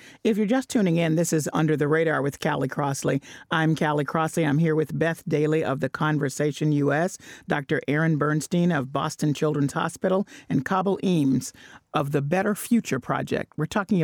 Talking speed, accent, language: 180 wpm, American, English